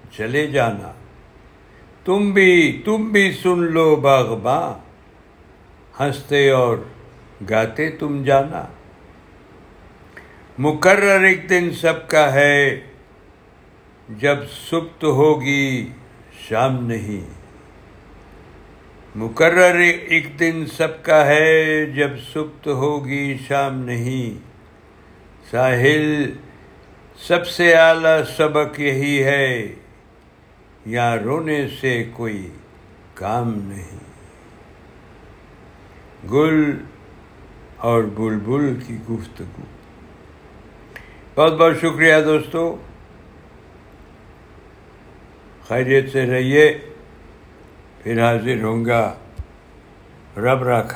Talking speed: 75 wpm